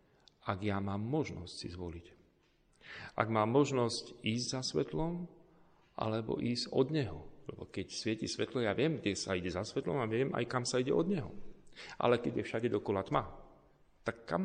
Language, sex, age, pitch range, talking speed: Slovak, male, 40-59, 90-120 Hz, 180 wpm